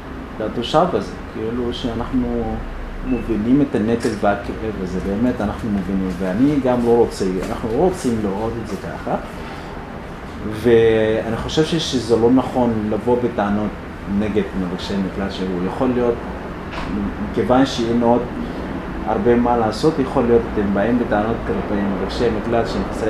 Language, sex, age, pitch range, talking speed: English, male, 30-49, 95-120 Hz, 55 wpm